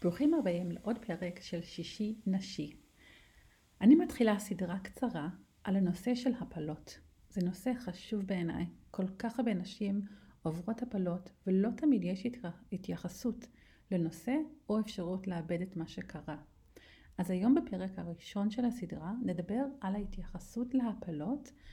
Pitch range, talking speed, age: 180-240 Hz, 125 wpm, 40-59